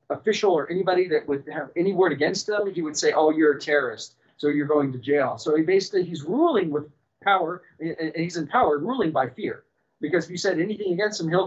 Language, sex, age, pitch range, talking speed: English, male, 40-59, 160-215 Hz, 230 wpm